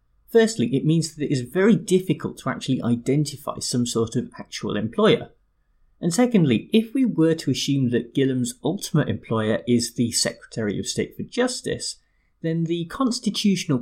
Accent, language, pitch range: British, English, 115-170 Hz